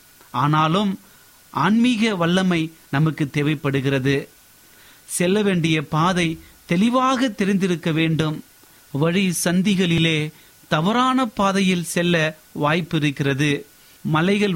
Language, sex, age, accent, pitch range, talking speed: Tamil, male, 30-49, native, 150-185 Hz, 80 wpm